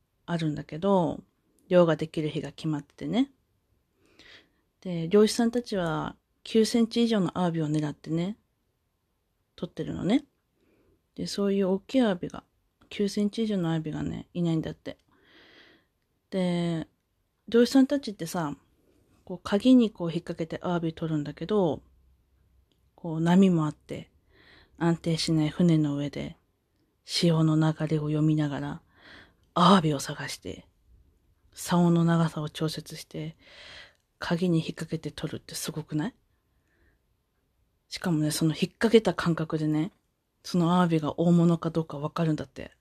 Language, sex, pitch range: Japanese, female, 155-205 Hz